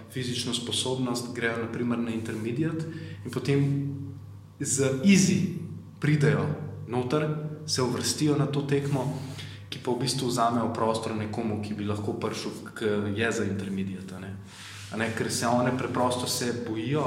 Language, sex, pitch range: English, male, 105-135 Hz